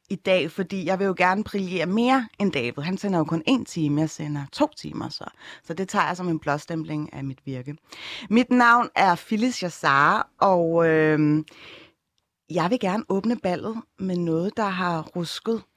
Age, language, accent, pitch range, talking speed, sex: 30-49, Danish, native, 155-205 Hz, 185 wpm, female